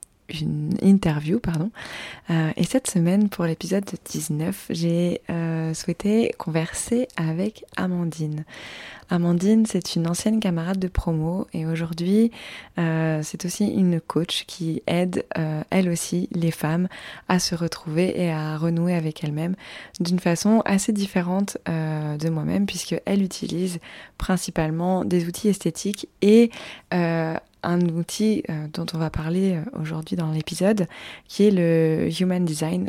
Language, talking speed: French, 140 wpm